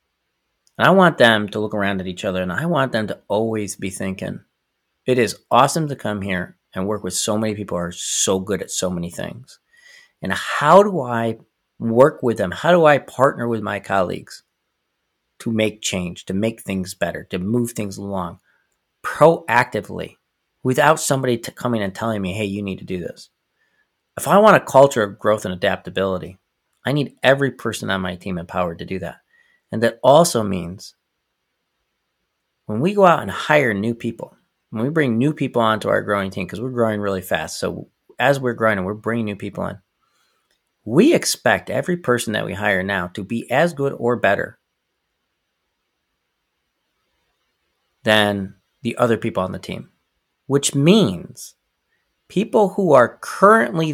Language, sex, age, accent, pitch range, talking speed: English, male, 40-59, American, 95-130 Hz, 175 wpm